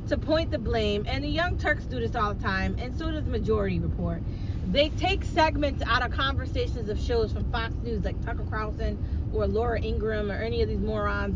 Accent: American